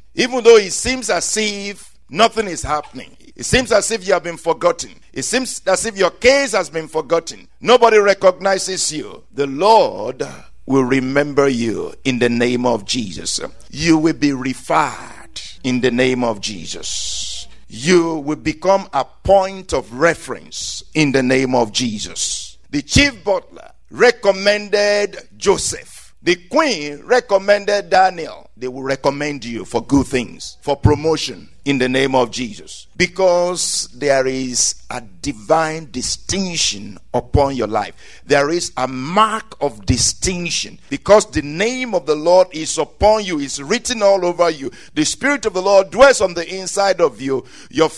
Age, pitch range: 50-69, 140-205 Hz